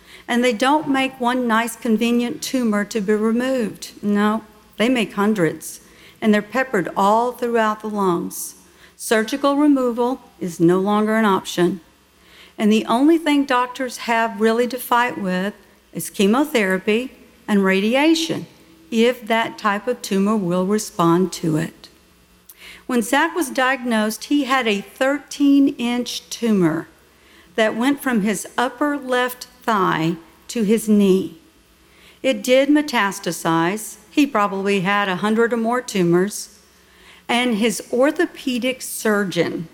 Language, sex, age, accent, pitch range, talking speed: English, female, 50-69, American, 195-245 Hz, 130 wpm